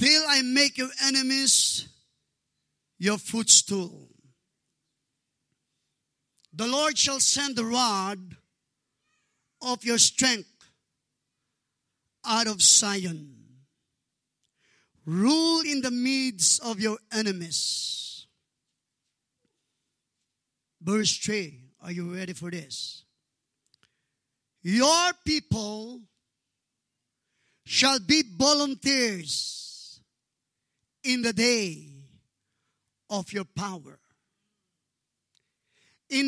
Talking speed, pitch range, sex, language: 75 wpm, 180-275 Hz, male, English